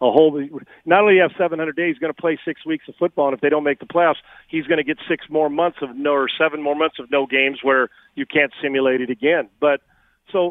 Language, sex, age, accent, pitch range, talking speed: English, male, 40-59, American, 145-180 Hz, 270 wpm